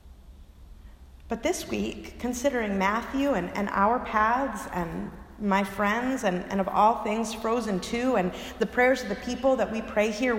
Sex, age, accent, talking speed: female, 30-49, American, 170 wpm